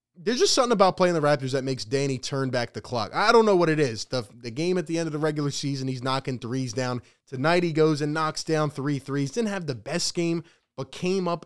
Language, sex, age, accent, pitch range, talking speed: English, male, 20-39, American, 135-165 Hz, 260 wpm